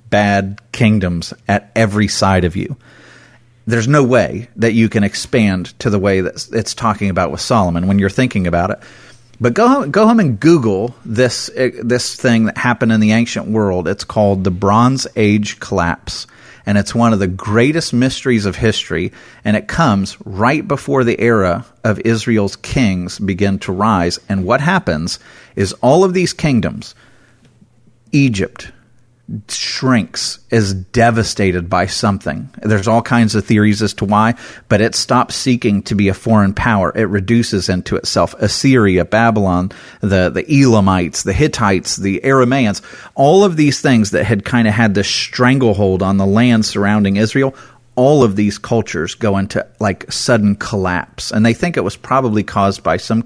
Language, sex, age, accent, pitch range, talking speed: English, male, 40-59, American, 100-120 Hz, 170 wpm